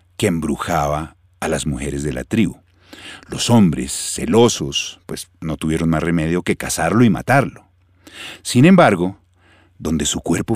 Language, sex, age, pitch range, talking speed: Spanish, male, 50-69, 85-120 Hz, 140 wpm